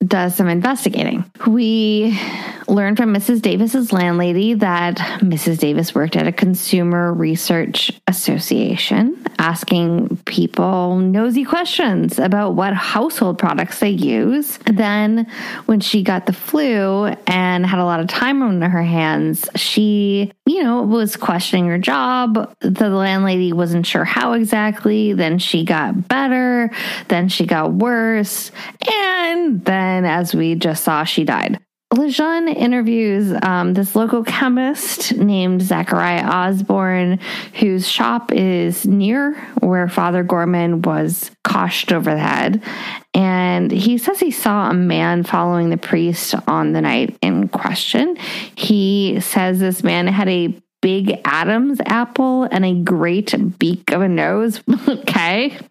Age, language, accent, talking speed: 20-39, English, American, 135 wpm